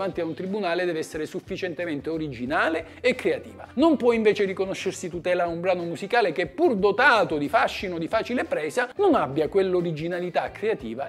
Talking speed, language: 160 wpm, Italian